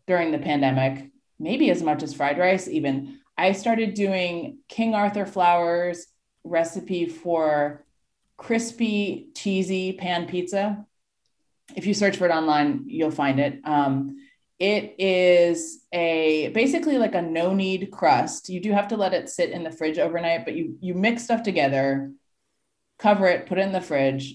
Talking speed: 160 wpm